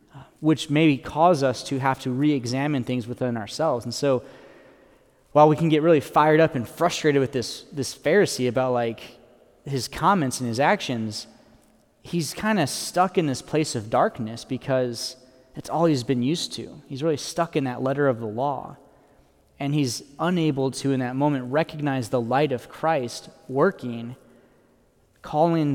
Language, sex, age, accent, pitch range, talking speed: English, male, 20-39, American, 125-155 Hz, 170 wpm